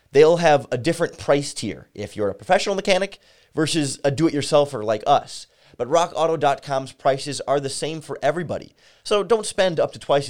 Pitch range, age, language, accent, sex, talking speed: 115-160 Hz, 30-49, English, American, male, 175 wpm